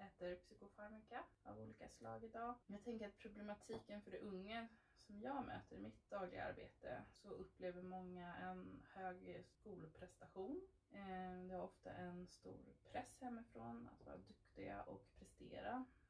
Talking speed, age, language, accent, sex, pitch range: 140 wpm, 20-39, Swedish, native, female, 180-225 Hz